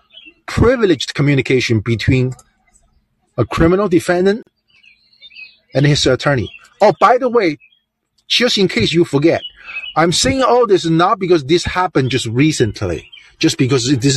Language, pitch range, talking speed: English, 125-190 Hz, 135 wpm